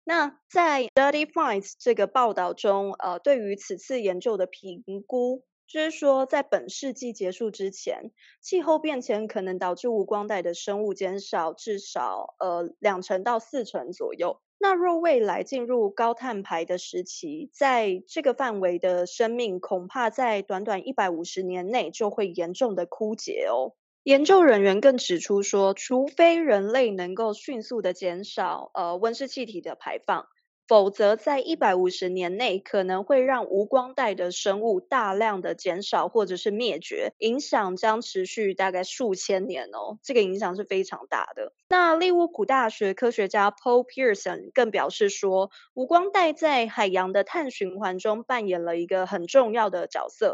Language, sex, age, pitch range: Chinese, female, 20-39, 195-275 Hz